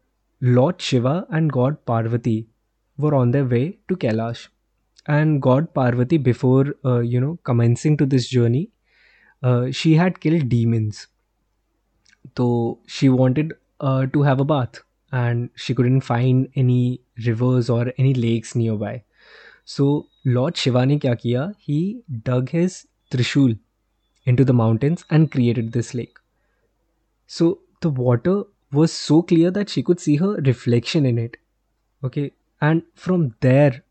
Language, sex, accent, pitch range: Hindi, male, native, 120-150 Hz